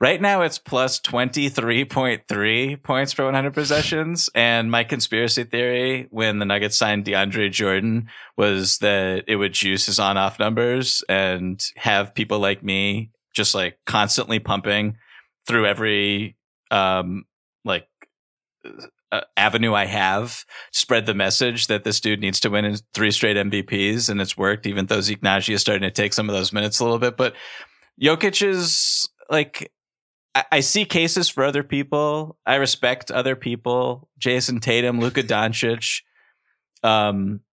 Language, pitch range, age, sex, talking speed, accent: English, 100-125 Hz, 30-49, male, 150 wpm, American